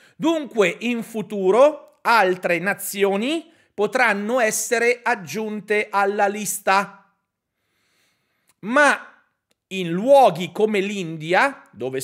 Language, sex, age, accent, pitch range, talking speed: Italian, male, 40-59, native, 165-235 Hz, 80 wpm